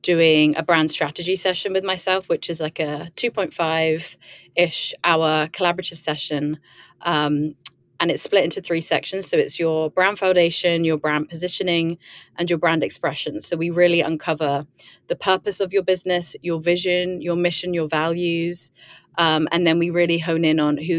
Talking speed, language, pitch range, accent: 165 wpm, English, 155-175 Hz, British